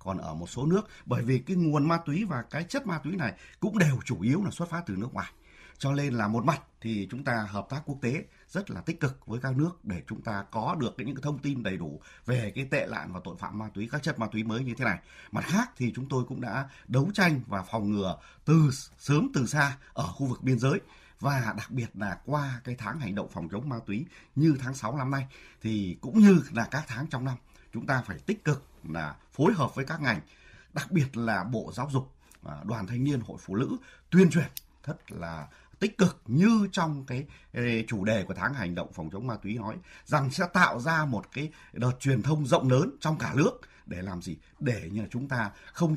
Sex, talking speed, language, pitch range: male, 245 wpm, Vietnamese, 115-155 Hz